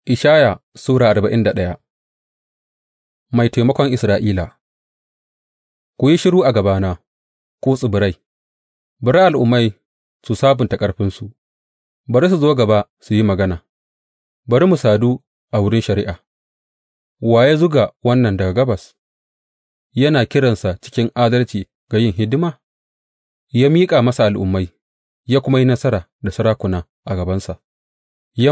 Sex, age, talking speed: male, 30-49, 95 wpm